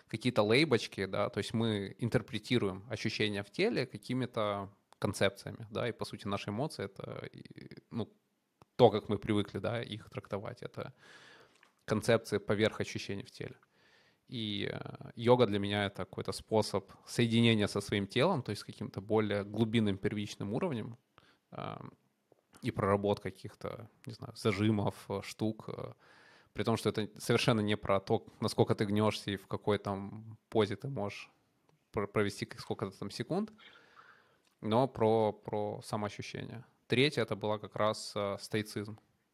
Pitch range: 100-115 Hz